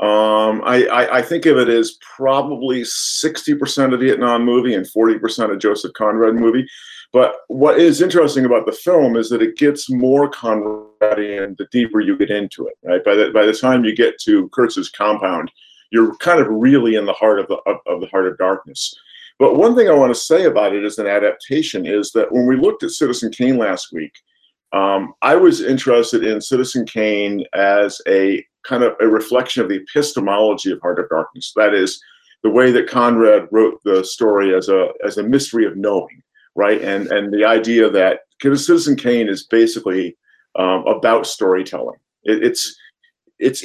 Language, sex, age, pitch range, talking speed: English, male, 50-69, 105-145 Hz, 190 wpm